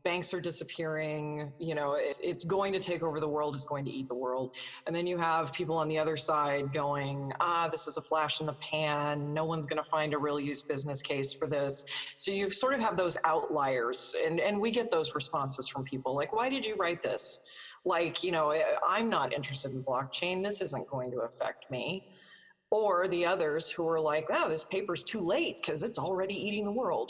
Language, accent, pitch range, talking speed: English, American, 150-190 Hz, 225 wpm